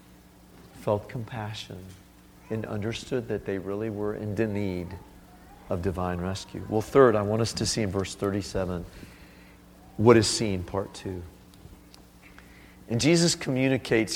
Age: 40-59